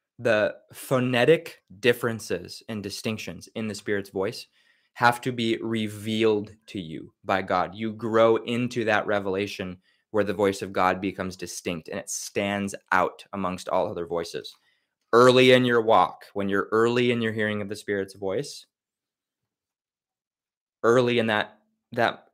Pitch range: 95-115 Hz